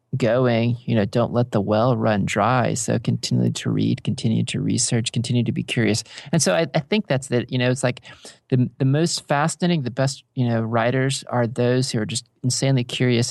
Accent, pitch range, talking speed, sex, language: American, 110-130 Hz, 210 wpm, male, English